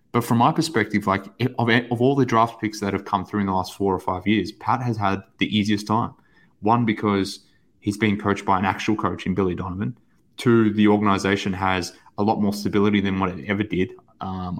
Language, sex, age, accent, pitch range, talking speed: English, male, 20-39, Australian, 95-115 Hz, 220 wpm